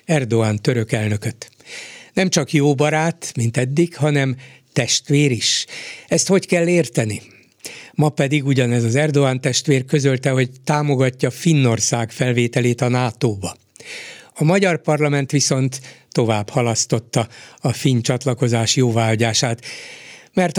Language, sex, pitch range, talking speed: Hungarian, male, 120-150 Hz, 115 wpm